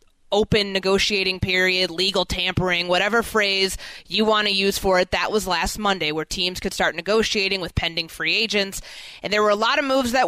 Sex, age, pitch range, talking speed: female, 20-39, 185-230 Hz, 200 wpm